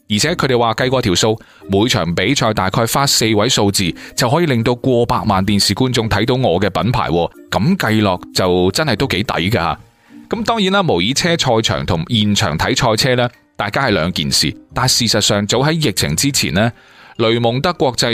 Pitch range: 105-145 Hz